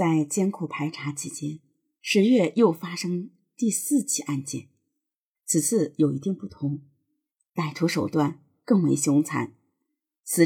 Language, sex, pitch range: Chinese, female, 150-215 Hz